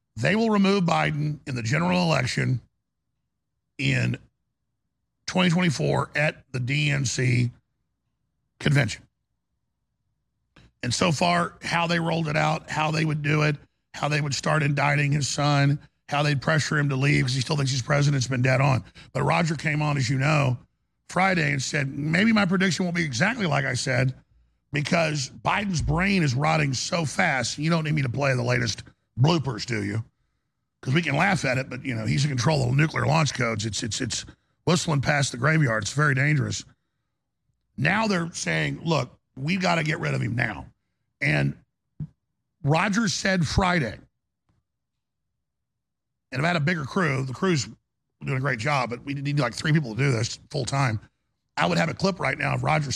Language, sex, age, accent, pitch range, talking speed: English, male, 50-69, American, 130-160 Hz, 180 wpm